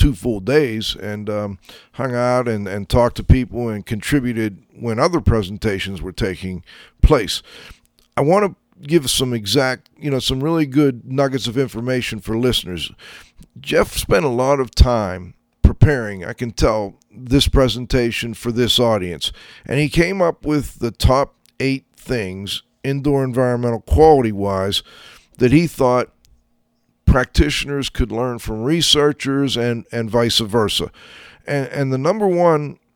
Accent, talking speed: American, 145 wpm